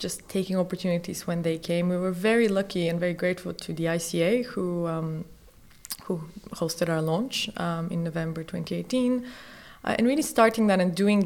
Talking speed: 175 wpm